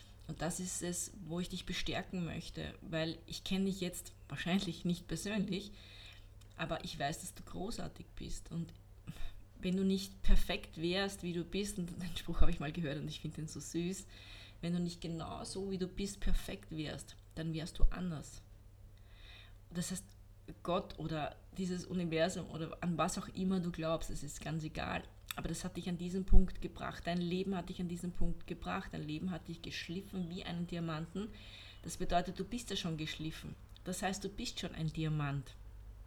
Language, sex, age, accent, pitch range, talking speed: German, female, 20-39, German, 140-185 Hz, 190 wpm